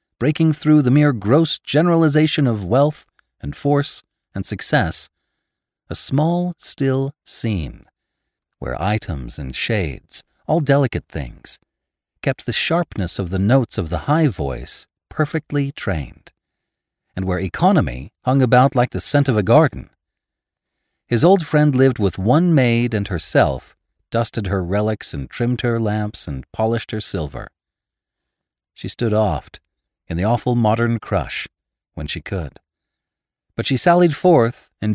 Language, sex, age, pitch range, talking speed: English, male, 40-59, 95-140 Hz, 140 wpm